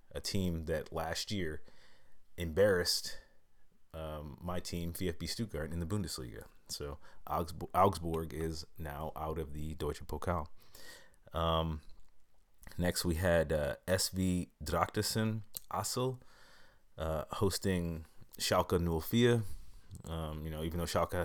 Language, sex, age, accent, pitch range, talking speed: English, male, 30-49, American, 80-95 Hz, 115 wpm